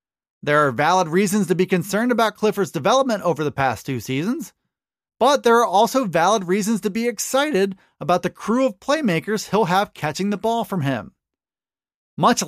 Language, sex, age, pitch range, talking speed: English, male, 30-49, 165-225 Hz, 180 wpm